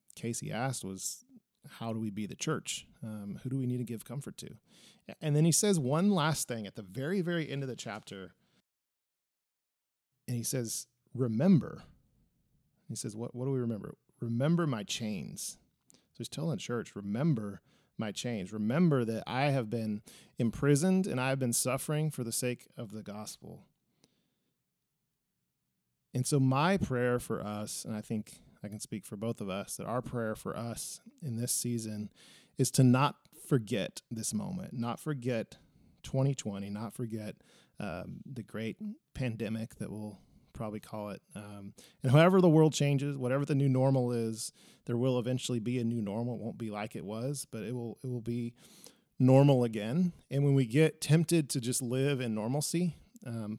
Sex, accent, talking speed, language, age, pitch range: male, American, 180 wpm, English, 30-49, 110-145 Hz